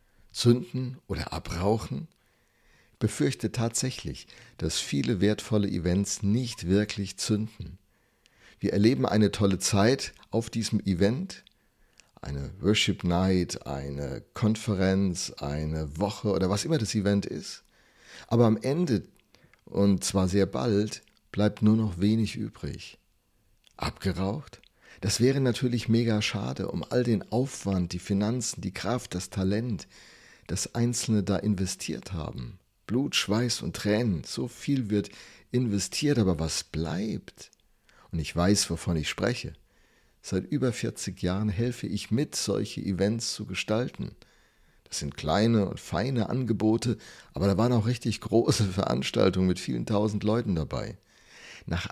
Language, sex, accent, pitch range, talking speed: German, male, German, 95-115 Hz, 130 wpm